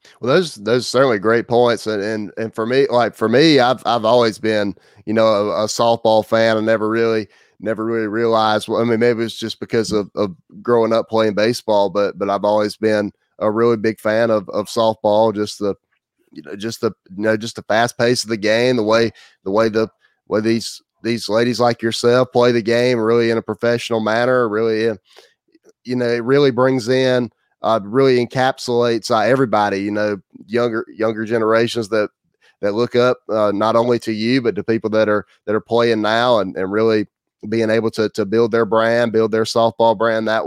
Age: 30-49